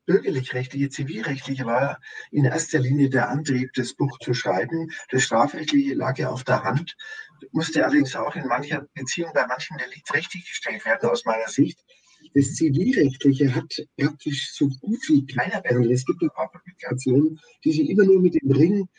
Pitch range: 130-155 Hz